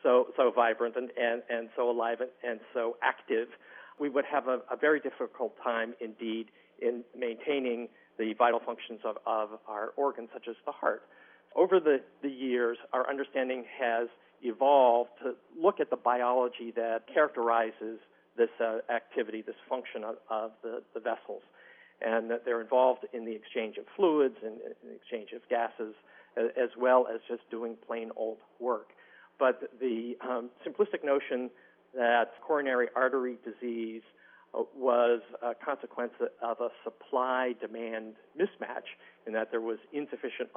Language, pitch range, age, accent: English, 115-135 Hz, 50-69, American